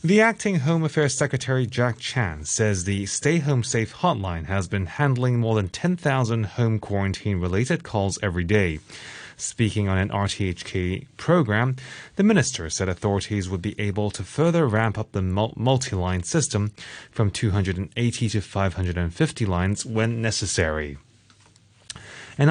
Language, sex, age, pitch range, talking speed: English, male, 20-39, 95-135 Hz, 135 wpm